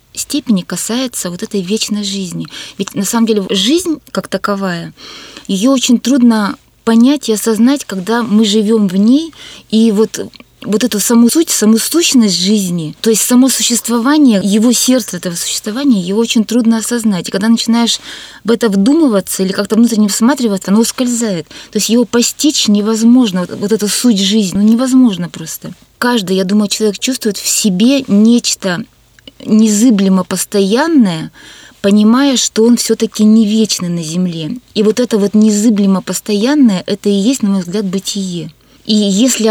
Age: 20-39